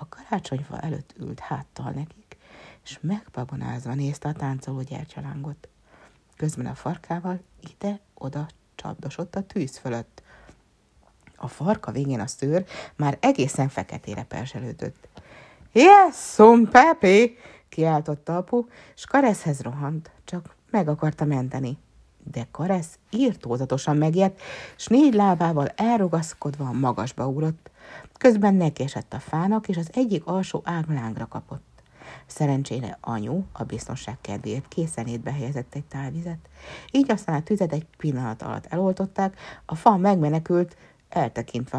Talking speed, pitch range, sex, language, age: 125 wpm, 130-185 Hz, female, Hungarian, 60-79